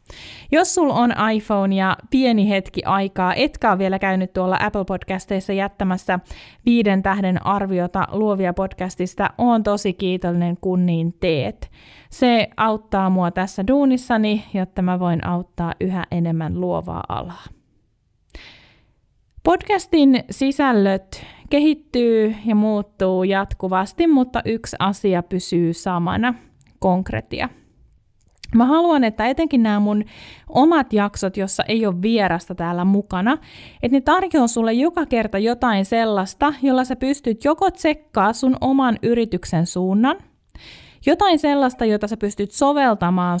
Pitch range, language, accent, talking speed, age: 180-240 Hz, Finnish, native, 125 wpm, 20-39